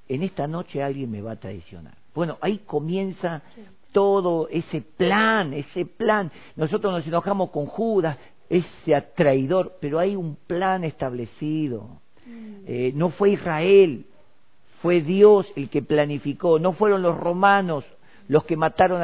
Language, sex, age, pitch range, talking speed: Spanish, male, 50-69, 145-205 Hz, 140 wpm